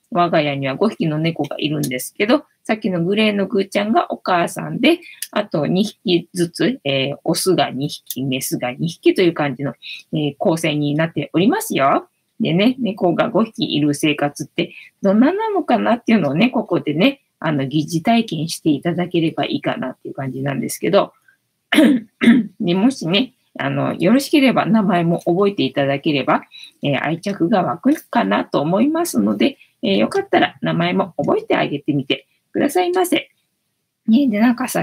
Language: Japanese